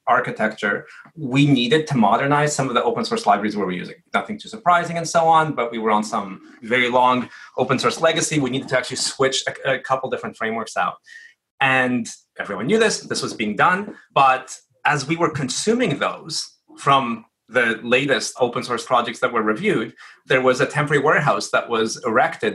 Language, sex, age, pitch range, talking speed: English, male, 30-49, 125-170 Hz, 190 wpm